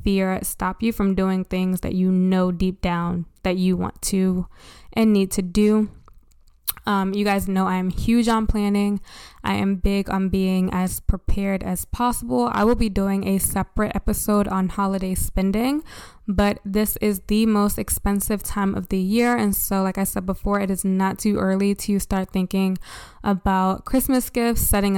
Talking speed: 175 wpm